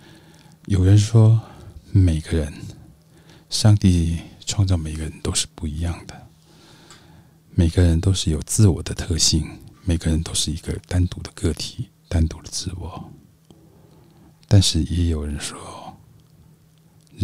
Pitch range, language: 80-110 Hz, Chinese